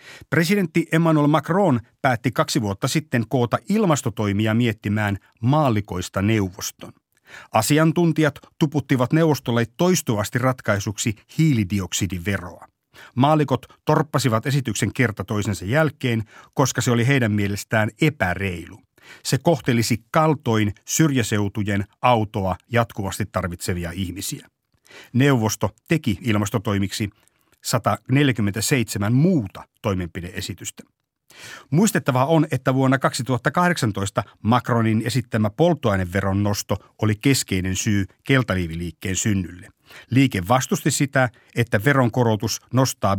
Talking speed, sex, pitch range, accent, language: 90 wpm, male, 100-135 Hz, native, Finnish